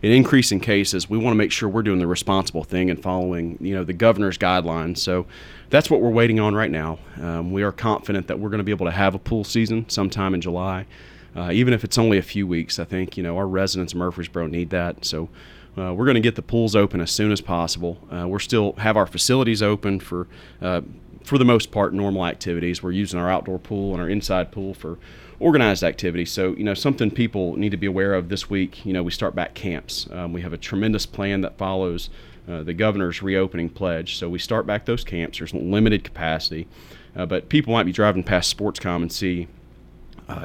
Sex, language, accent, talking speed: male, English, American, 230 wpm